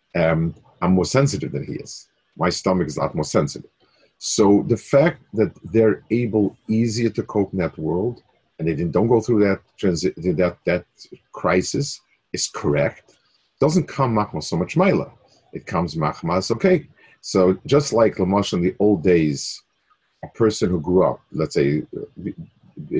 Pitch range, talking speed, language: 95-140 Hz, 170 wpm, English